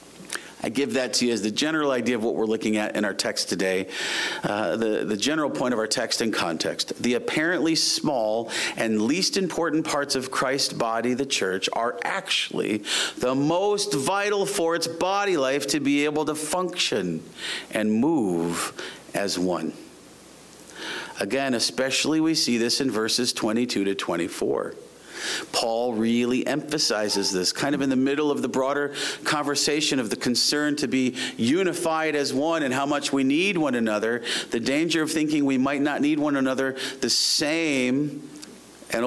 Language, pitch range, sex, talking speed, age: English, 120-155 Hz, male, 165 wpm, 40-59